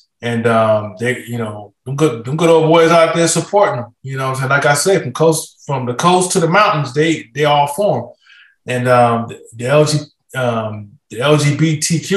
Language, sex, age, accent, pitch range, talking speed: English, male, 20-39, American, 125-160 Hz, 195 wpm